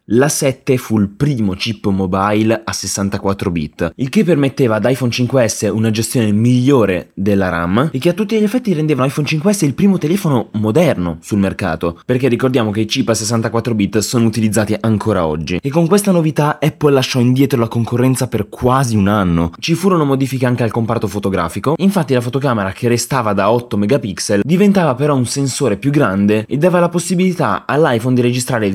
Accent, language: native, Italian